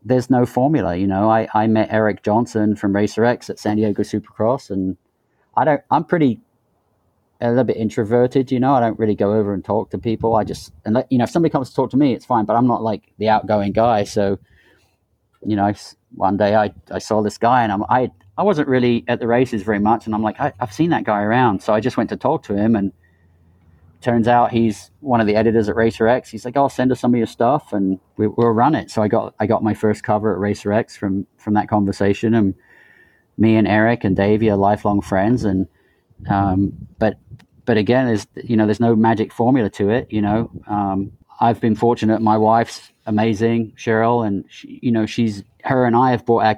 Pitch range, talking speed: 105-120 Hz, 235 wpm